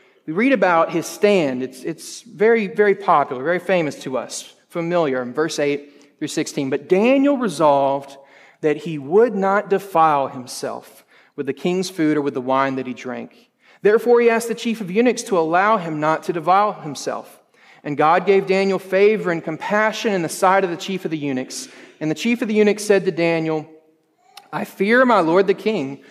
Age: 30-49